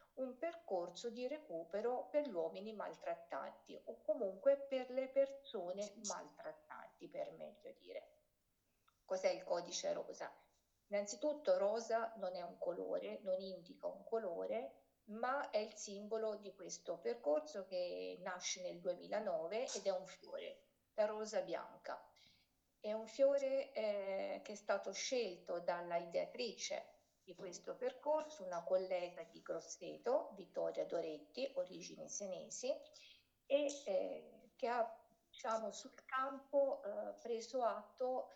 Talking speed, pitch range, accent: 125 wpm, 190-275 Hz, native